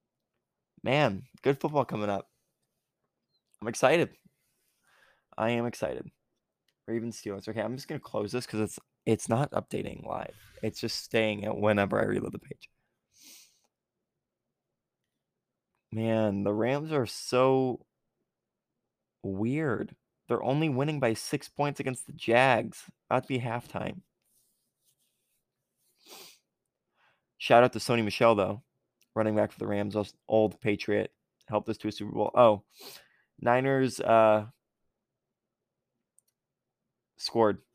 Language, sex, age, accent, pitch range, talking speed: English, male, 20-39, American, 105-125 Hz, 120 wpm